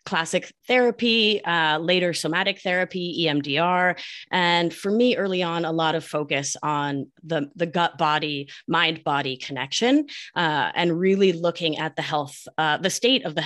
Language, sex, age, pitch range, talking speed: English, female, 30-49, 155-195 Hz, 160 wpm